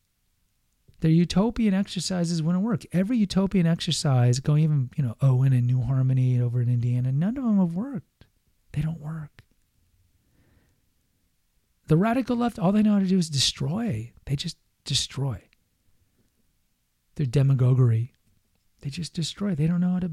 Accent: American